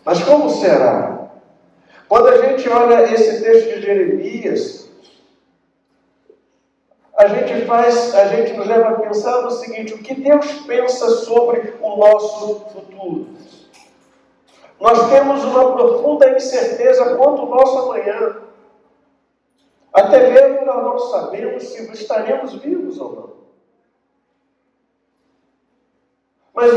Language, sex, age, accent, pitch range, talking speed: Portuguese, male, 50-69, Brazilian, 240-330 Hz, 110 wpm